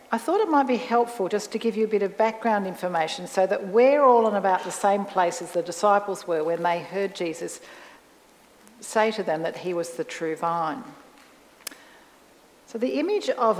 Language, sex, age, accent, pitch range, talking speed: English, female, 50-69, Australian, 175-220 Hz, 200 wpm